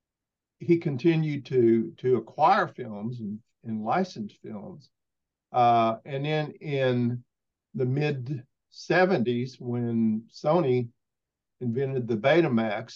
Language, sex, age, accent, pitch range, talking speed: English, male, 50-69, American, 115-145 Hz, 100 wpm